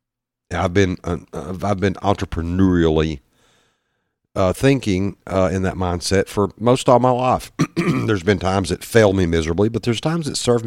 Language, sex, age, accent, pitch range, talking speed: English, male, 50-69, American, 90-120 Hz, 165 wpm